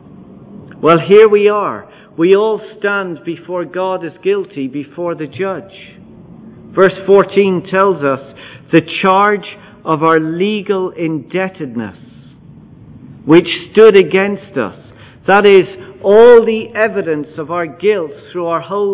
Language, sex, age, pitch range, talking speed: English, male, 50-69, 160-215 Hz, 125 wpm